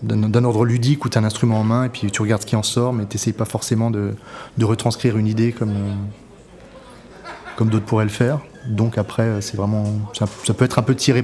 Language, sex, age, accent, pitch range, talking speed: French, male, 30-49, French, 105-120 Hz, 250 wpm